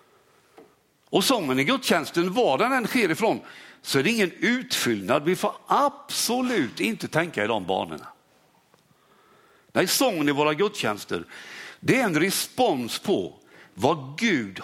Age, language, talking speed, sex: 60-79, Swedish, 140 wpm, male